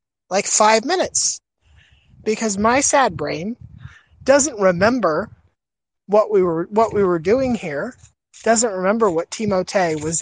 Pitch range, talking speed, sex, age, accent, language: 155-215 Hz, 130 wpm, male, 30-49, American, English